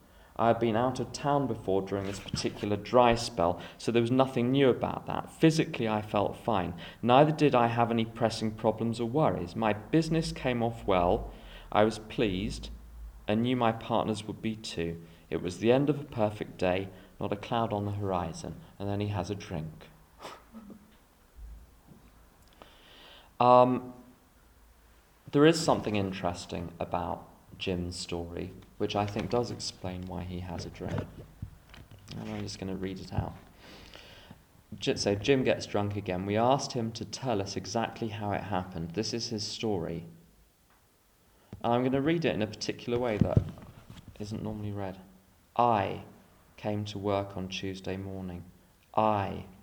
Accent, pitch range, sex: British, 90-115 Hz, male